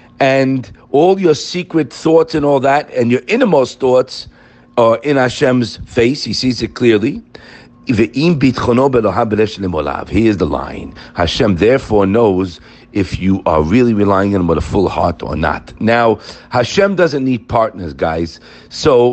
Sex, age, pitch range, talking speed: male, 50-69, 115-160 Hz, 145 wpm